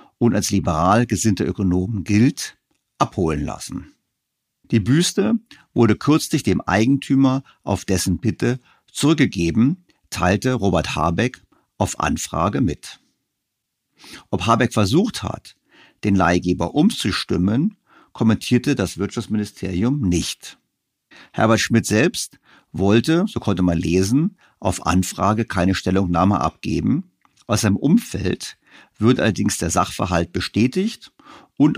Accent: German